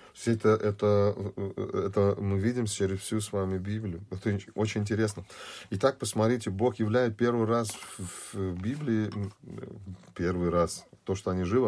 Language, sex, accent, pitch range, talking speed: Russian, male, native, 95-115 Hz, 145 wpm